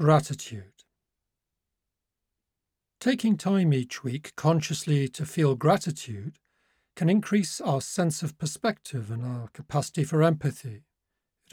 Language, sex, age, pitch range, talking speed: English, male, 40-59, 95-155 Hz, 110 wpm